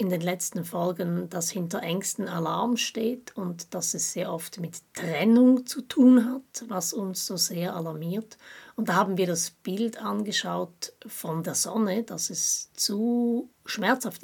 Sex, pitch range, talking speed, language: female, 180-235 Hz, 160 wpm, German